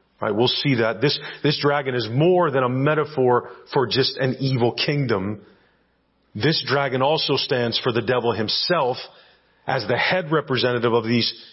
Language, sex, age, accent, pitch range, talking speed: English, male, 40-59, American, 115-150 Hz, 155 wpm